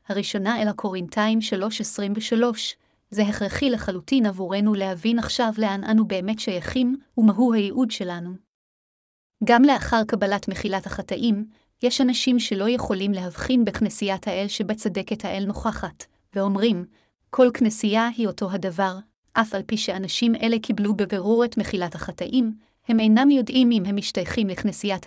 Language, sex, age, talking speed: Hebrew, female, 30-49, 140 wpm